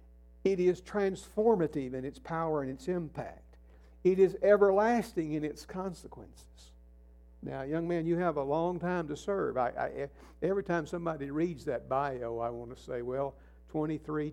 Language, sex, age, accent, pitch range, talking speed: English, male, 60-79, American, 105-165 Hz, 155 wpm